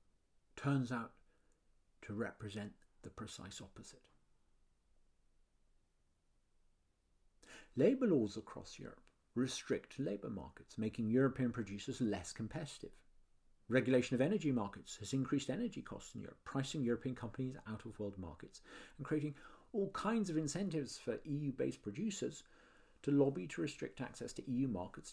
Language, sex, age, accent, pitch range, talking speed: English, male, 50-69, British, 105-145 Hz, 120 wpm